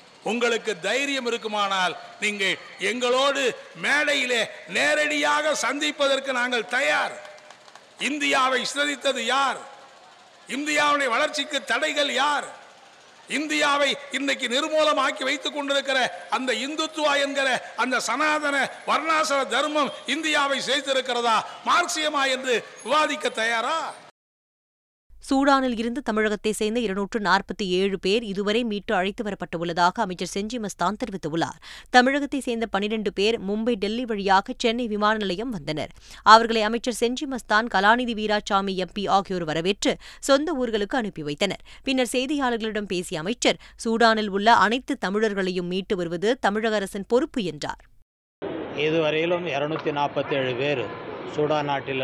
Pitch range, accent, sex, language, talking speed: 200-275 Hz, native, male, Tamil, 100 wpm